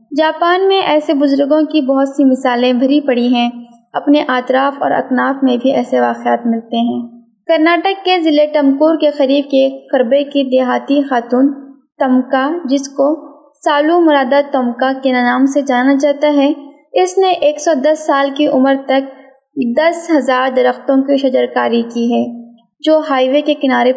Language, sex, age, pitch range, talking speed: Urdu, female, 20-39, 255-295 Hz, 165 wpm